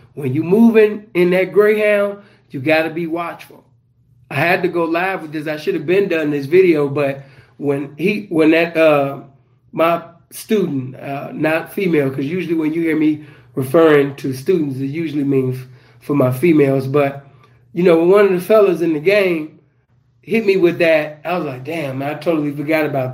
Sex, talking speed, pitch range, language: male, 190 wpm, 135-175 Hz, English